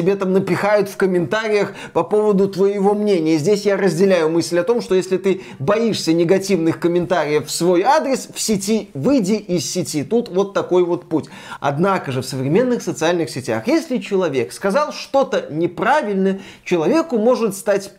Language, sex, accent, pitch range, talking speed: Russian, male, native, 175-230 Hz, 160 wpm